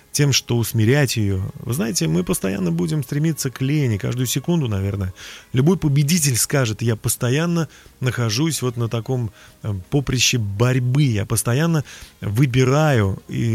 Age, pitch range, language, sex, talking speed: 30-49, 110-150 Hz, Russian, male, 130 wpm